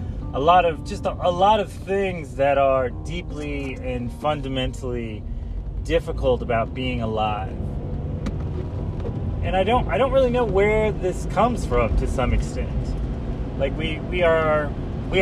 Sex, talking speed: male, 145 wpm